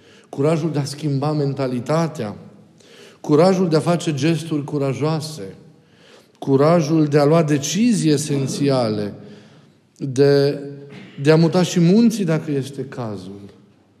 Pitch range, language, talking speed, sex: 130-160 Hz, Romanian, 110 wpm, male